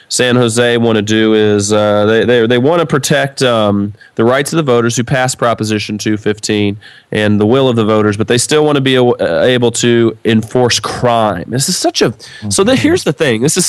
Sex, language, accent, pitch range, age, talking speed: male, English, American, 110-140 Hz, 30-49, 220 wpm